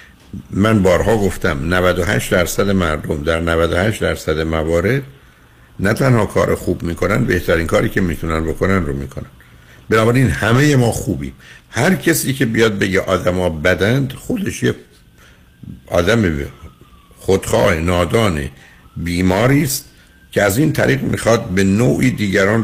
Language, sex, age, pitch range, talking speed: Persian, male, 60-79, 85-115 Hz, 125 wpm